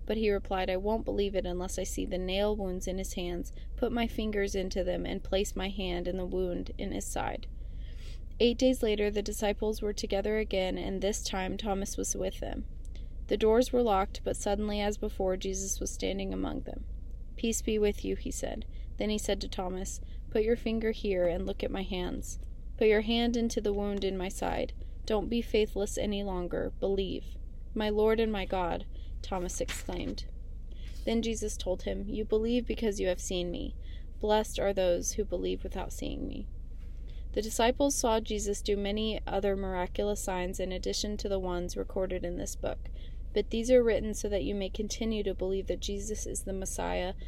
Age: 20-39